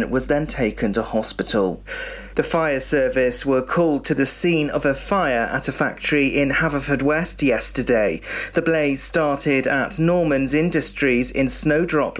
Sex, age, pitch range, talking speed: male, 40-59, 130-155 Hz, 155 wpm